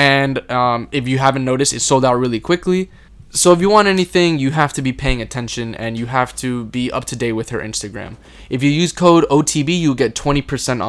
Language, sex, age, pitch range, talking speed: English, male, 10-29, 125-155 Hz, 225 wpm